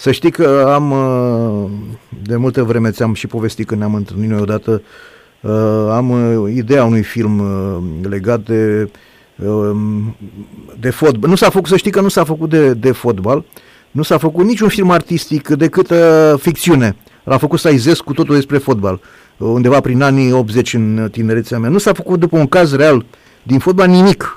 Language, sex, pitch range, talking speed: Romanian, male, 110-155 Hz, 165 wpm